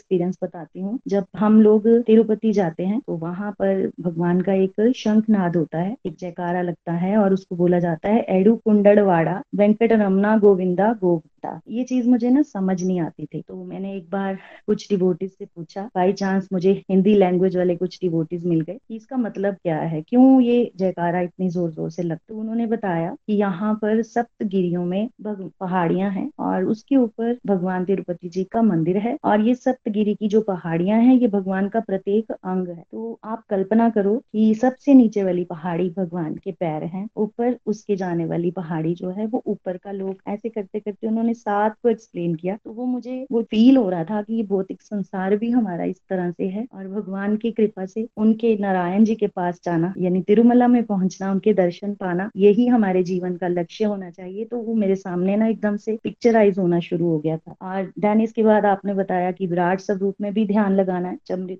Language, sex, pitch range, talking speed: Hindi, female, 180-215 Hz, 185 wpm